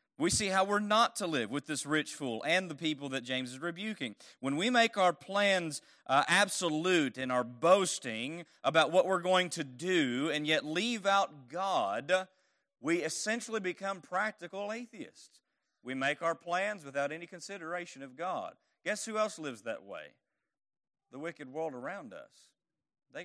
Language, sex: English, male